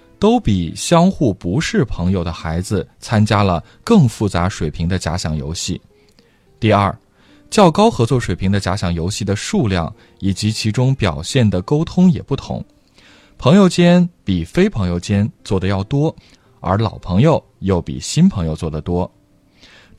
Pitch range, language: 90-145 Hz, Chinese